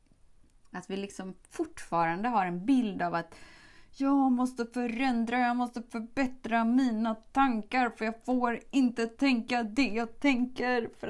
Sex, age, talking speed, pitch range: female, 20-39, 140 wpm, 170-260 Hz